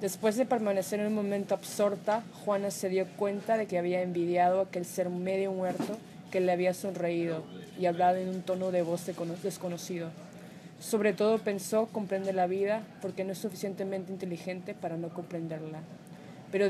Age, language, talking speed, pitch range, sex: 20-39, Spanish, 165 wpm, 185-205 Hz, female